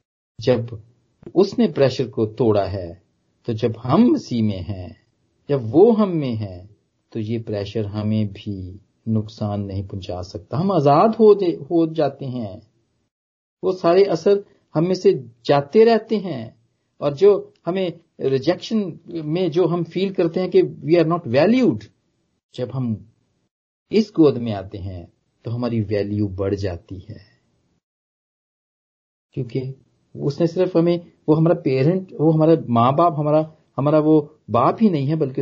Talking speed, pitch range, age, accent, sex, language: 140 wpm, 110-170 Hz, 40-59, Indian, male, English